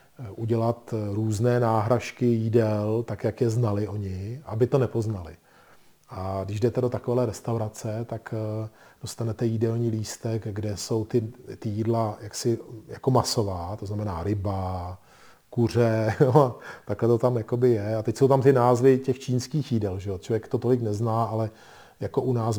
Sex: male